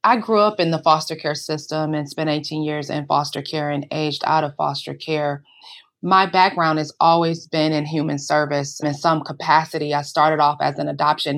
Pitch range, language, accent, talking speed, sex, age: 145-165 Hz, English, American, 200 wpm, female, 20-39